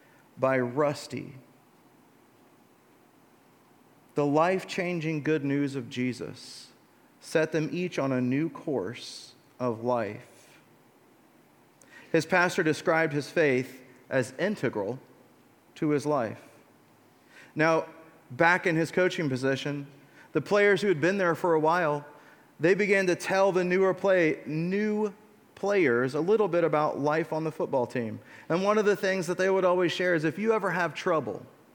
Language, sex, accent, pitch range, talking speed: English, male, American, 135-180 Hz, 145 wpm